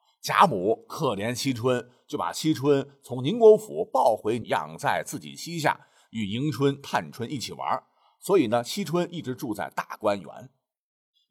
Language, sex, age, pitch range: Chinese, male, 50-69, 130-210 Hz